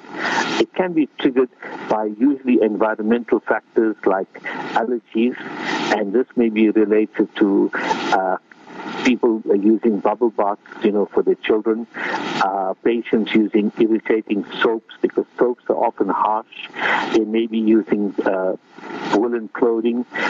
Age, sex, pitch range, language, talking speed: 60-79, male, 110-140 Hz, English, 125 wpm